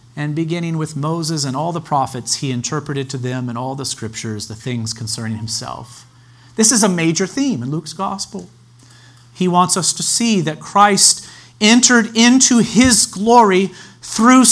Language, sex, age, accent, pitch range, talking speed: English, male, 40-59, American, 125-170 Hz, 165 wpm